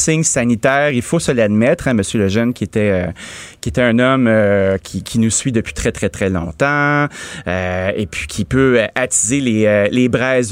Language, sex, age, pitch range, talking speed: French, male, 30-49, 110-160 Hz, 205 wpm